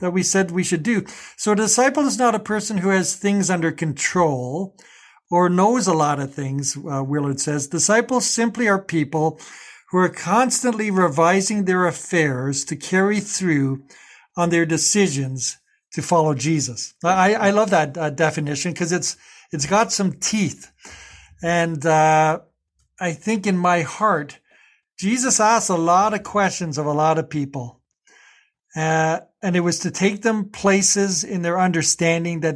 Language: English